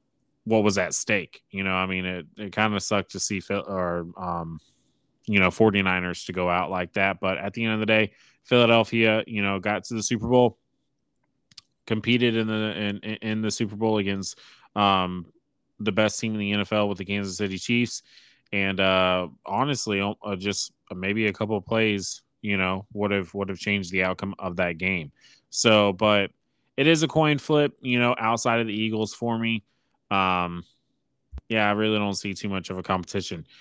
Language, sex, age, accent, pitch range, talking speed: English, male, 20-39, American, 95-115 Hz, 195 wpm